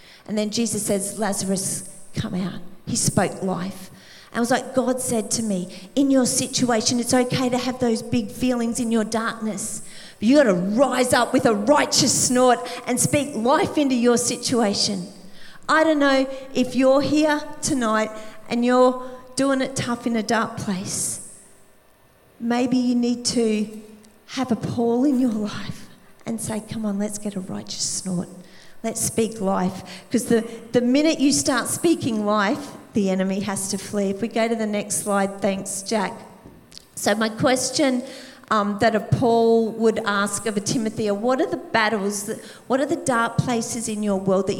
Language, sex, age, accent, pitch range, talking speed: English, female, 40-59, Australian, 205-260 Hz, 180 wpm